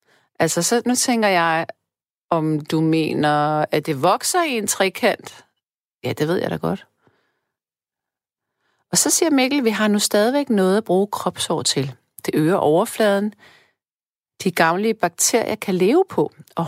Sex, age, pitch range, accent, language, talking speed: female, 40-59, 160-230 Hz, native, Danish, 155 wpm